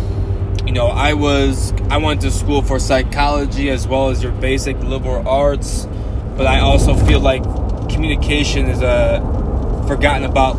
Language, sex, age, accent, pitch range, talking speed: English, male, 20-39, American, 95-125 Hz, 155 wpm